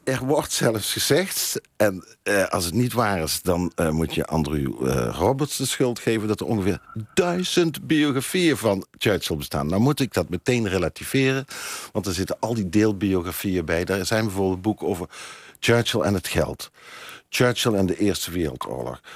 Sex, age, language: male, 50-69, Dutch